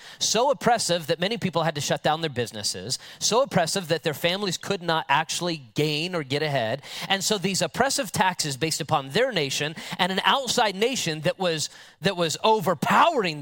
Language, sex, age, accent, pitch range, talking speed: English, male, 30-49, American, 155-205 Hz, 185 wpm